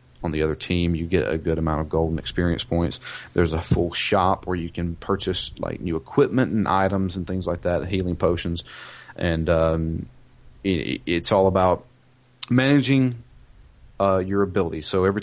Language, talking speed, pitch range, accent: English, 175 wpm, 85-115 Hz, American